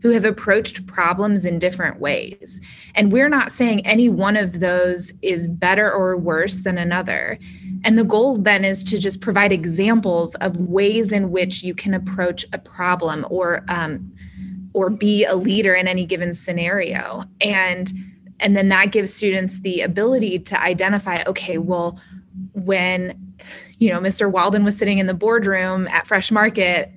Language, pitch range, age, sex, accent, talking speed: English, 185-215 Hz, 20-39, female, American, 165 wpm